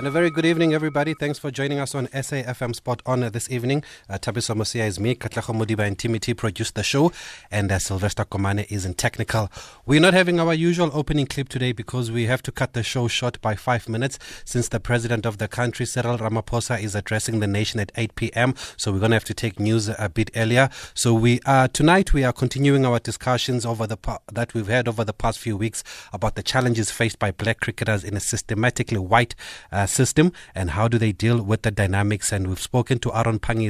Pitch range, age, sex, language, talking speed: 105-125 Hz, 30-49, male, English, 225 wpm